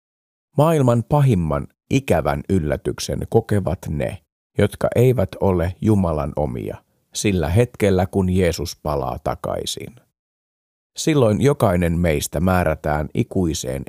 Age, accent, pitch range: 50-69, native, 80-110 Hz